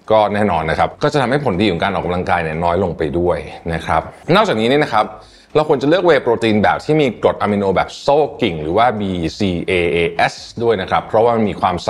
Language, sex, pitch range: Thai, male, 85-125 Hz